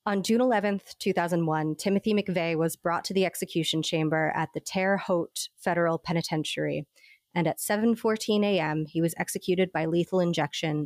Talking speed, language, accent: 155 wpm, English, American